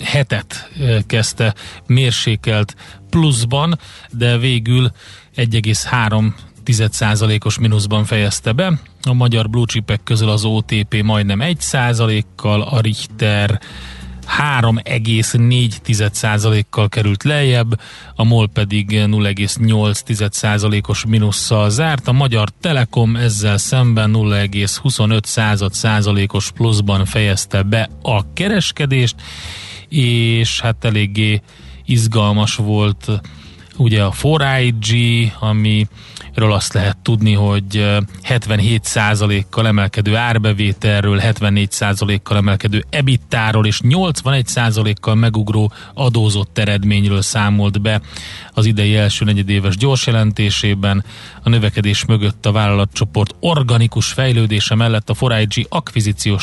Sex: male